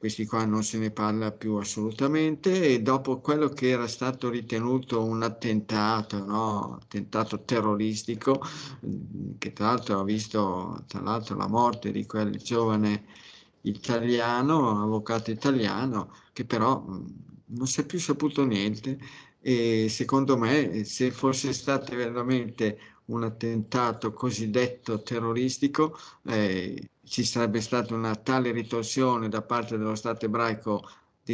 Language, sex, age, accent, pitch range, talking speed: Italian, male, 50-69, native, 105-125 Hz, 125 wpm